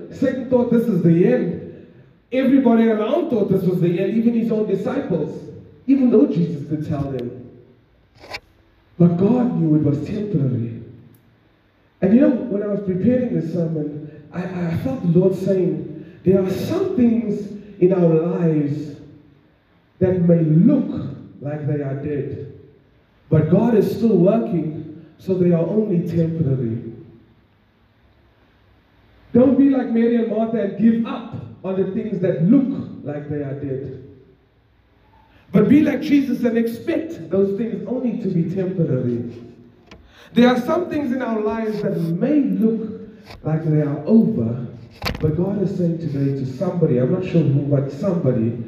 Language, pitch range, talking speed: English, 135-215 Hz, 155 wpm